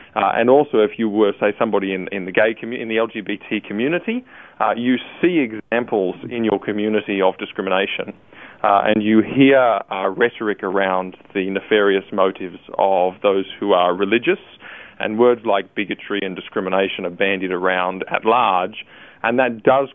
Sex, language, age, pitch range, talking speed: male, English, 20-39, 100-115 Hz, 165 wpm